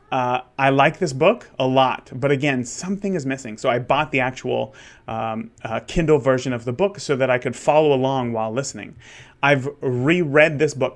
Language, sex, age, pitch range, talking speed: English, male, 30-49, 125-160 Hz, 195 wpm